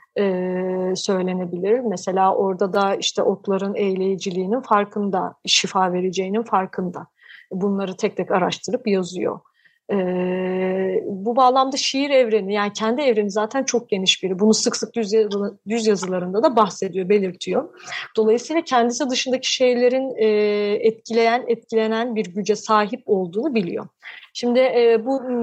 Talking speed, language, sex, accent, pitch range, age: 125 wpm, Turkish, female, native, 195-240 Hz, 30-49